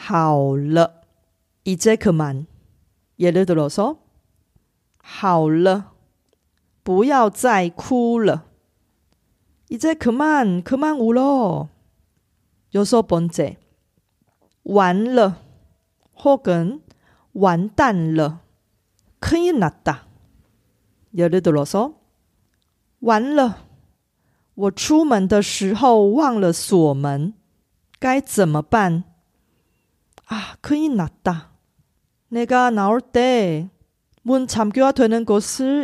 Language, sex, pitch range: Korean, female, 145-230 Hz